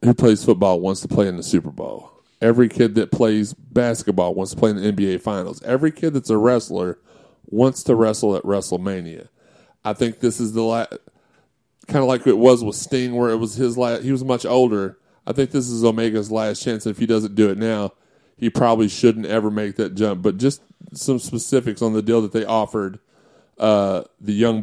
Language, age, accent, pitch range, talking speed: English, 30-49, American, 105-120 Hz, 210 wpm